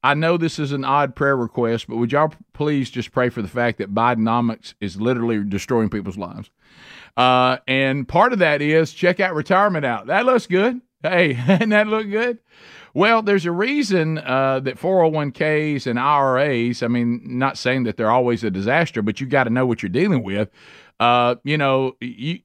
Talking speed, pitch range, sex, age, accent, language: 195 wpm, 120-160 Hz, male, 50-69, American, English